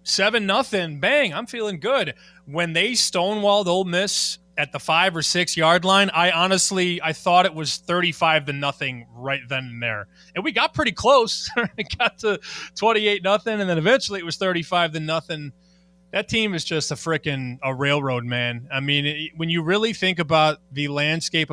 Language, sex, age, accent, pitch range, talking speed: English, male, 20-39, American, 145-190 Hz, 190 wpm